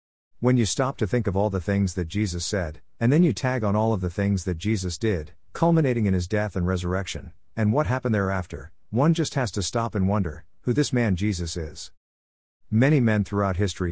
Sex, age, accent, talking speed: male, 50-69, American, 215 wpm